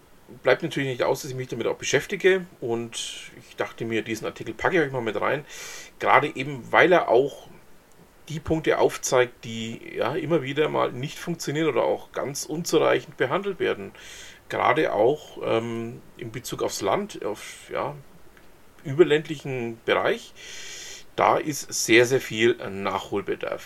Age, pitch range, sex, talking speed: 40-59, 125-185 Hz, male, 150 wpm